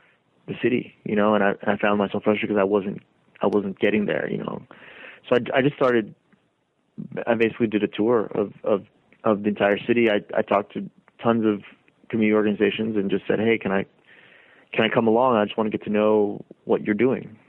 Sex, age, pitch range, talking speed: male, 30-49, 100-115 Hz, 215 wpm